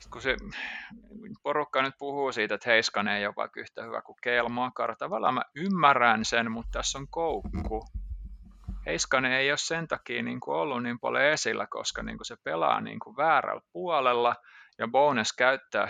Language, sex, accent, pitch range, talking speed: Finnish, male, native, 105-135 Hz, 160 wpm